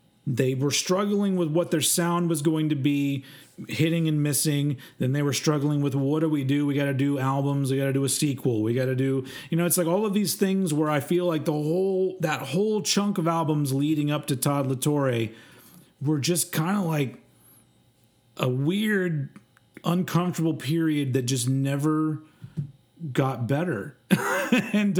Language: English